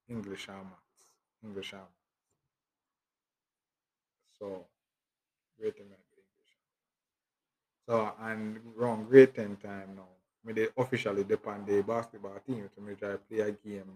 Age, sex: 20-39, male